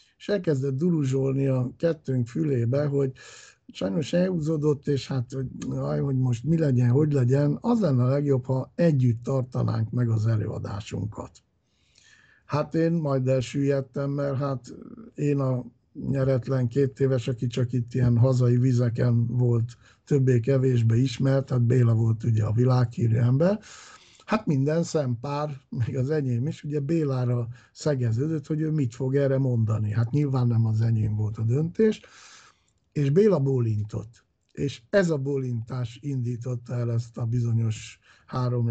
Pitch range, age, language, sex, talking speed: 120-150 Hz, 60-79, Hungarian, male, 145 wpm